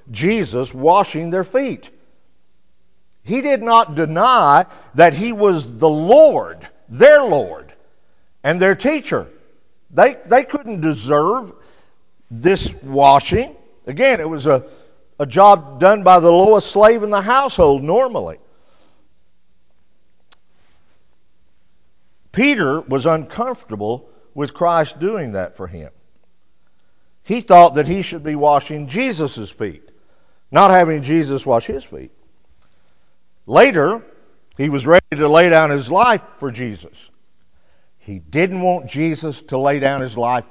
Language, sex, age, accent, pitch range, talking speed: English, male, 50-69, American, 140-195 Hz, 125 wpm